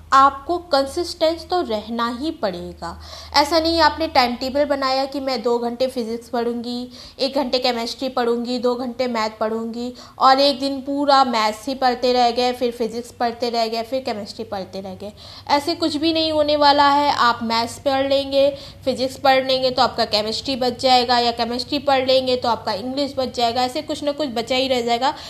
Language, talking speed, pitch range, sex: Hindi, 190 wpm, 240-295 Hz, female